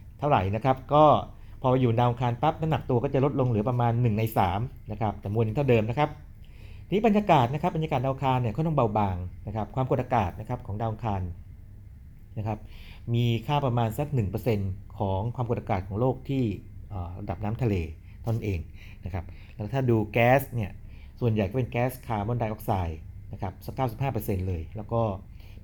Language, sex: Thai, male